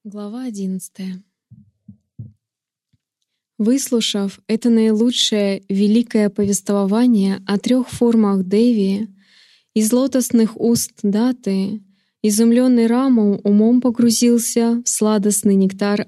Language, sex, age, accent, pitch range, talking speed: Russian, female, 20-39, native, 205-235 Hz, 80 wpm